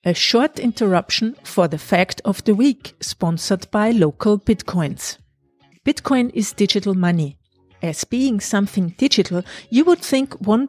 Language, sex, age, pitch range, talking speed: English, female, 50-69, 180-235 Hz, 140 wpm